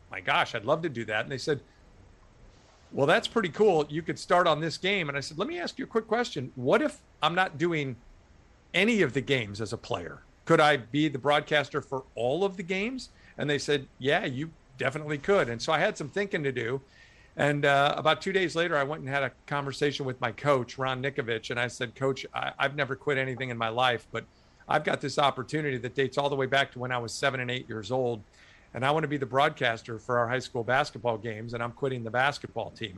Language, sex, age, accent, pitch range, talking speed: English, male, 50-69, American, 125-150 Hz, 245 wpm